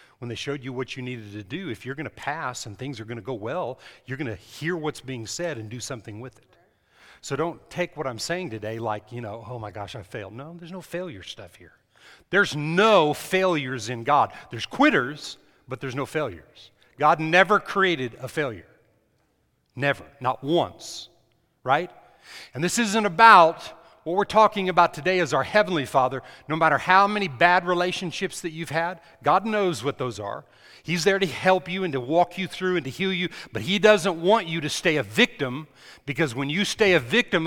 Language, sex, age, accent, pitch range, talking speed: English, male, 40-59, American, 125-180 Hz, 210 wpm